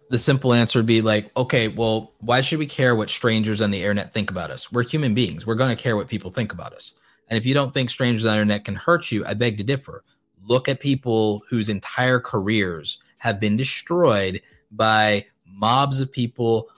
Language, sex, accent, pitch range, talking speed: English, male, American, 105-125 Hz, 220 wpm